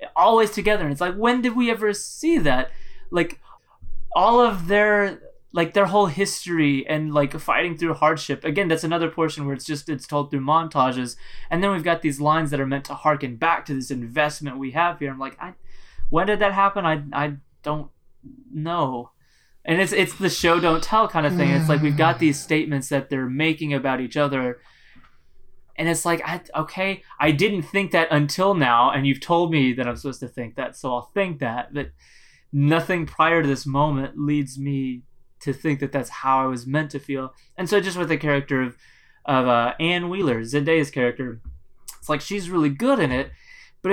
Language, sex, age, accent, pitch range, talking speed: English, male, 20-39, American, 140-175 Hz, 205 wpm